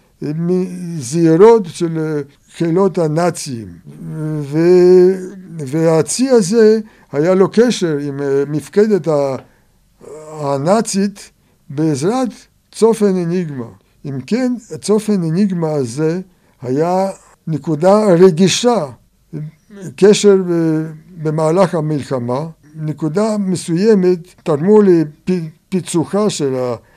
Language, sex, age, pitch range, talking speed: Hebrew, male, 60-79, 145-185 Hz, 70 wpm